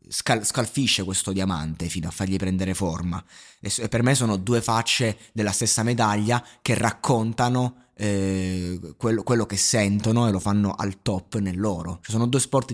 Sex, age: male, 20-39